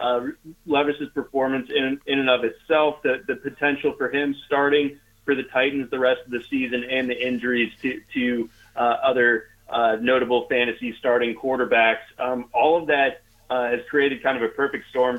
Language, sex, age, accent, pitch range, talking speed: English, male, 30-49, American, 115-135 Hz, 180 wpm